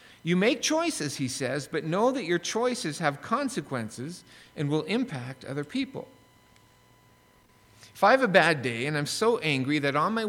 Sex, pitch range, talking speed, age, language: male, 130-180 Hz, 175 wpm, 50-69, English